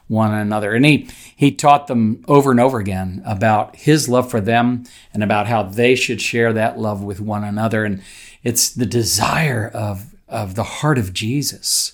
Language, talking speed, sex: English, 185 wpm, male